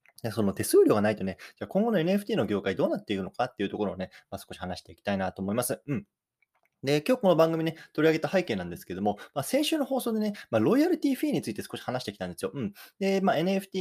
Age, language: 20-39, Japanese